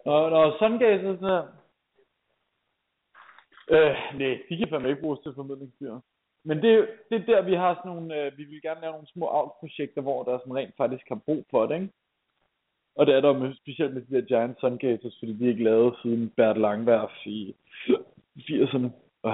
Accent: Danish